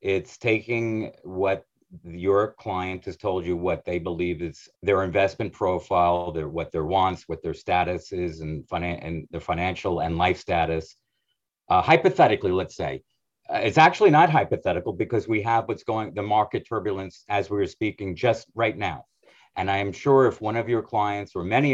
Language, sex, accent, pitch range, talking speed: English, male, American, 95-130 Hz, 175 wpm